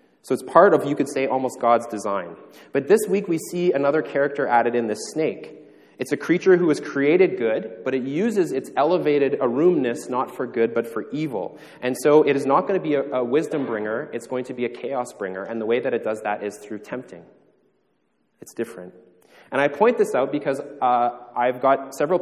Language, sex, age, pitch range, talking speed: English, male, 20-39, 115-150 Hz, 220 wpm